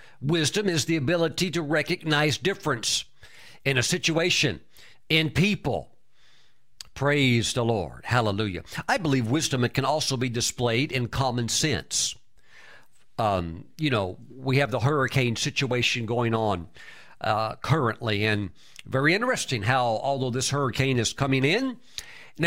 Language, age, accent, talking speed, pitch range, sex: English, 50-69, American, 130 wpm, 125-170 Hz, male